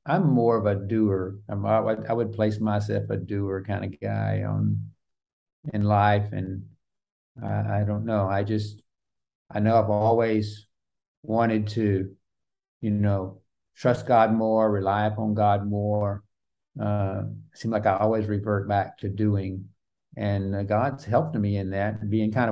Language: English